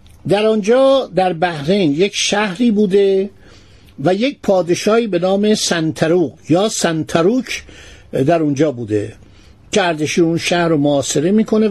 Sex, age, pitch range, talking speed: male, 60-79, 160-220 Hz, 125 wpm